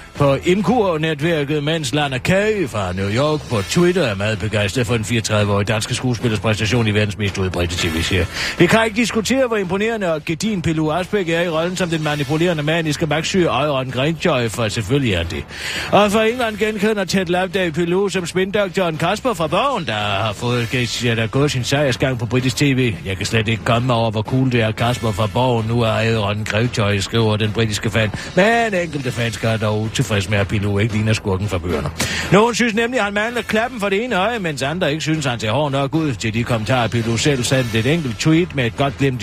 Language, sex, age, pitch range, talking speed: Danish, male, 40-59, 110-170 Hz, 225 wpm